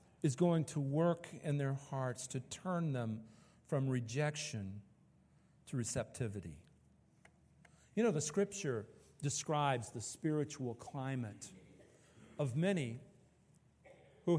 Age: 50-69